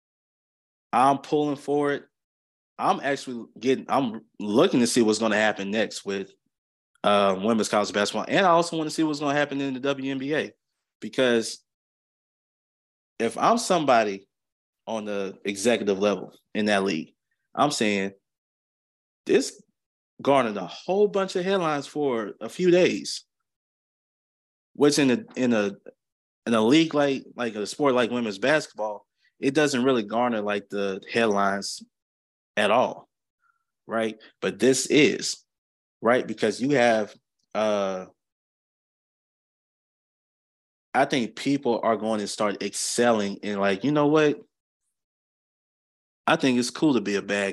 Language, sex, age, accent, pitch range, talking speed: English, male, 20-39, American, 100-145 Hz, 145 wpm